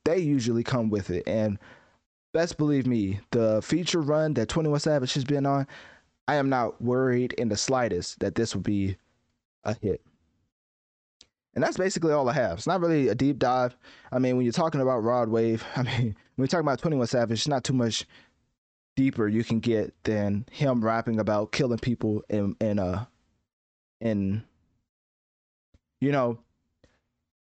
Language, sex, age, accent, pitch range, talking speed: English, male, 20-39, American, 105-135 Hz, 180 wpm